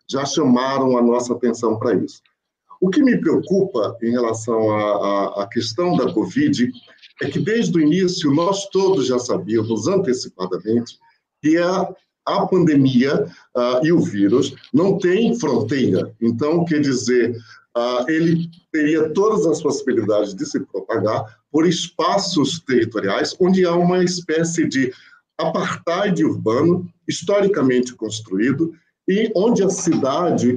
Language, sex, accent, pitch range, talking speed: Portuguese, male, Brazilian, 120-180 Hz, 130 wpm